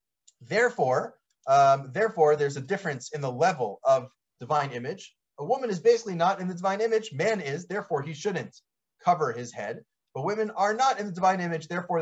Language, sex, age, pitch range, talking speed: English, male, 30-49, 135-175 Hz, 190 wpm